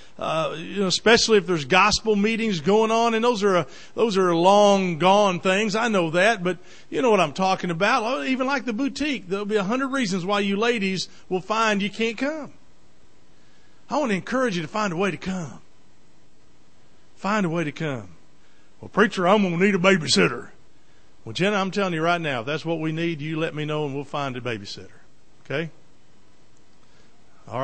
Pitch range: 150-210 Hz